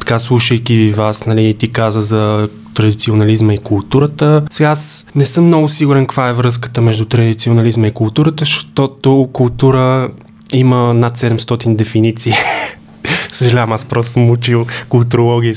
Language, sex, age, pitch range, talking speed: Bulgarian, male, 20-39, 115-135 Hz, 130 wpm